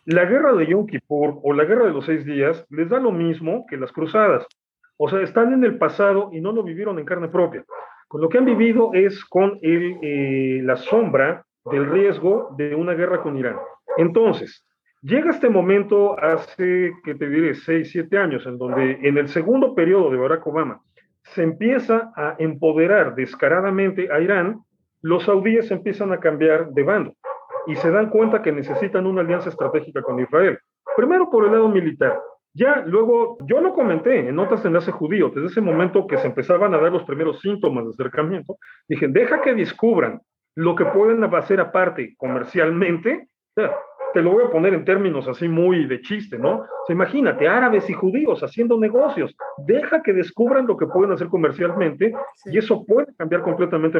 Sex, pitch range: male, 160-225 Hz